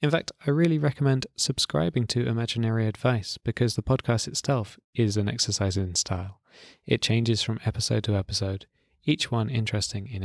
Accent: British